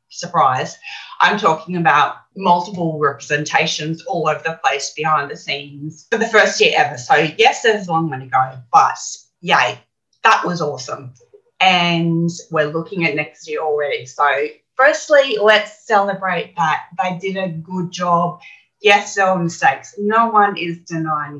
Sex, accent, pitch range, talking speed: female, Australian, 160-230 Hz, 155 wpm